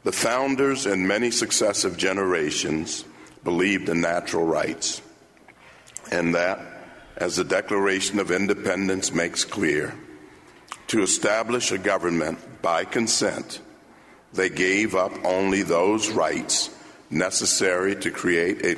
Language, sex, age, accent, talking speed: English, male, 60-79, American, 110 wpm